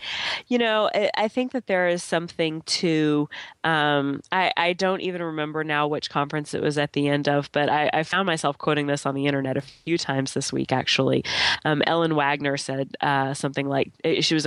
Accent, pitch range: American, 140-160 Hz